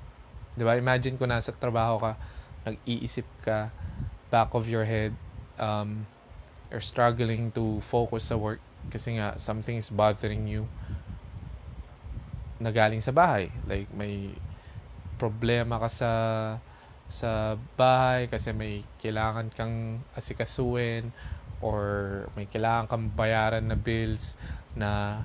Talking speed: 115 wpm